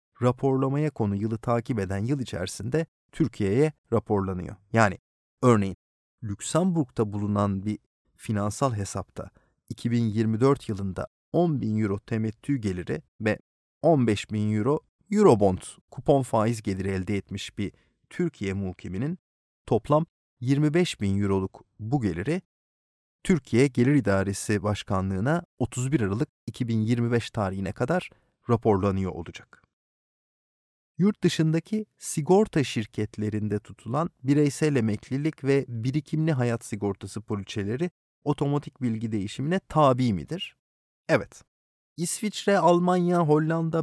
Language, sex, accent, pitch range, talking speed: Turkish, male, native, 105-155 Hz, 95 wpm